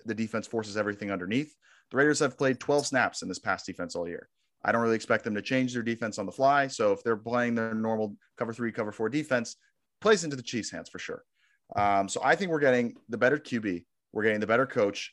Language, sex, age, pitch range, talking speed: English, male, 30-49, 105-130 Hz, 240 wpm